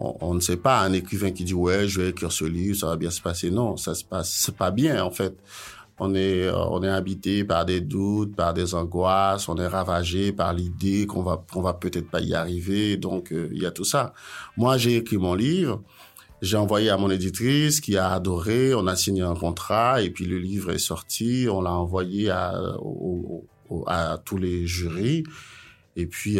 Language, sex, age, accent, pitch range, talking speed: French, male, 50-69, French, 90-120 Hz, 225 wpm